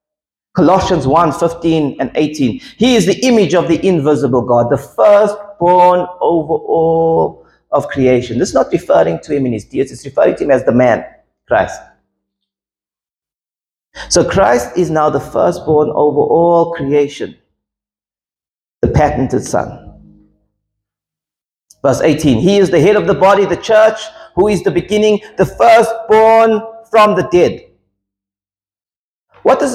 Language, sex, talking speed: English, male, 140 wpm